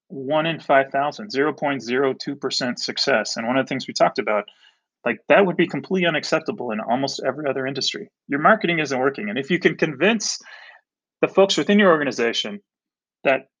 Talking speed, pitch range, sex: 170 wpm, 120-155 Hz, male